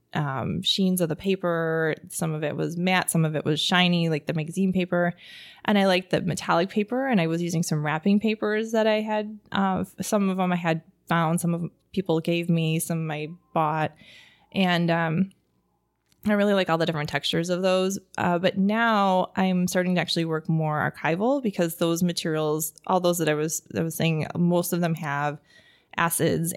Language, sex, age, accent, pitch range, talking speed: English, female, 20-39, American, 160-185 Hz, 200 wpm